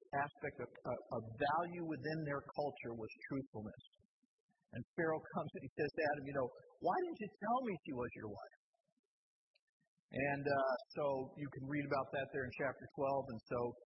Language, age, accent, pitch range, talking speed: English, 50-69, American, 135-170 Hz, 180 wpm